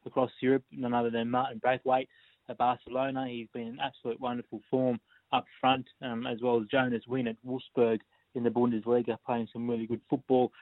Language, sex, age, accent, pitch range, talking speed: English, male, 20-39, Australian, 115-130 Hz, 185 wpm